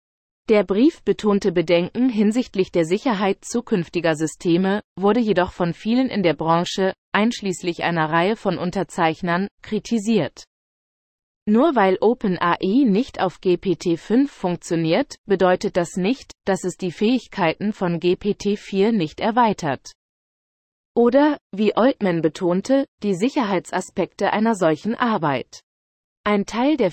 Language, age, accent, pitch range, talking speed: German, 20-39, German, 170-220 Hz, 115 wpm